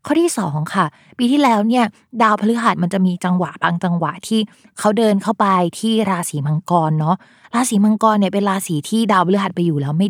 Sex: female